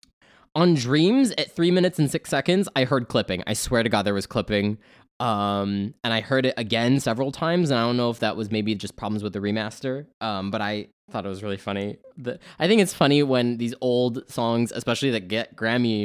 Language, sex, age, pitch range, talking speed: English, male, 10-29, 105-135 Hz, 225 wpm